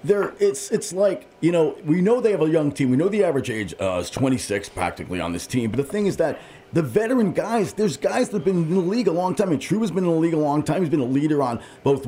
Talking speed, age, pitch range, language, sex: 310 wpm, 40-59, 130-180 Hz, English, male